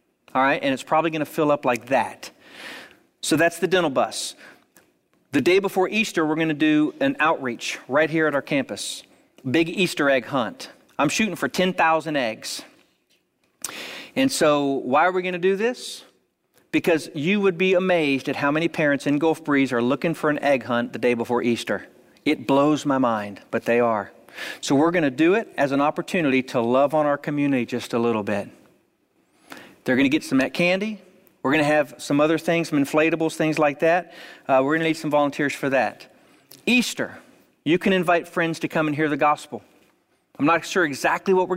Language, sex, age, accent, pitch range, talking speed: English, male, 40-59, American, 130-170 Hz, 200 wpm